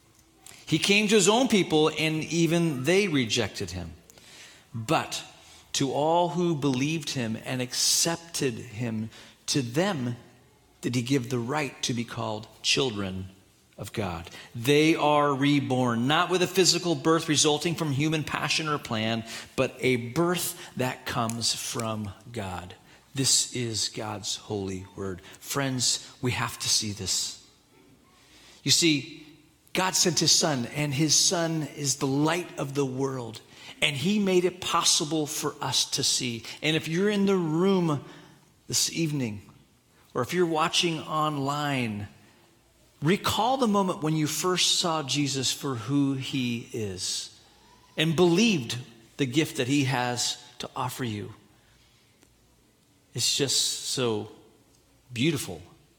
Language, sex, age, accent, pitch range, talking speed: English, male, 40-59, American, 115-155 Hz, 135 wpm